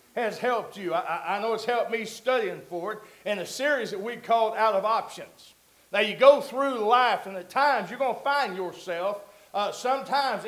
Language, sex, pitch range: English, male, 215-280 Hz